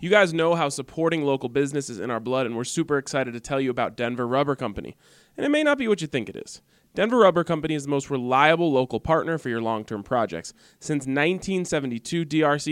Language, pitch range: English, 125-160 Hz